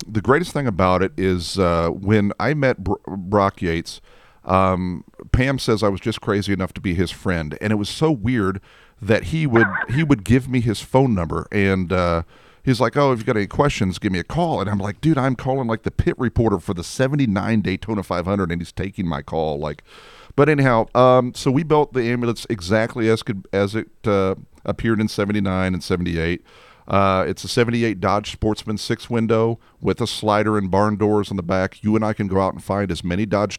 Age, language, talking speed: 40-59, English, 220 wpm